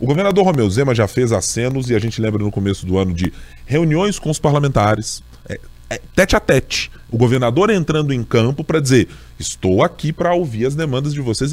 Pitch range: 105-160 Hz